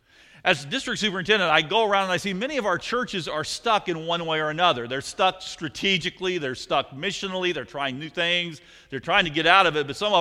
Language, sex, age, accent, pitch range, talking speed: English, male, 50-69, American, 135-205 Hz, 235 wpm